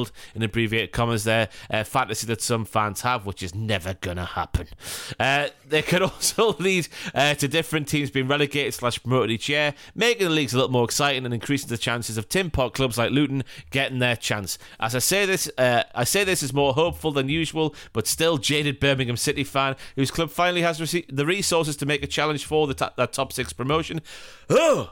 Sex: male